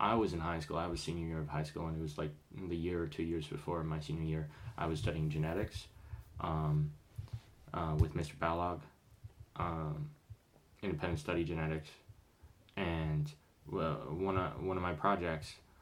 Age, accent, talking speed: 20-39, American, 165 wpm